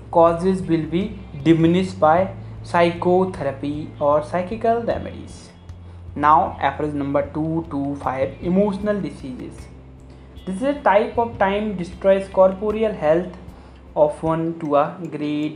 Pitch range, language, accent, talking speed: 140-195 Hz, Hindi, native, 120 wpm